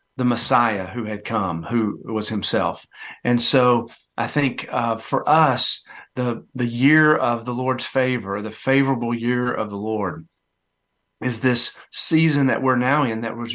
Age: 50-69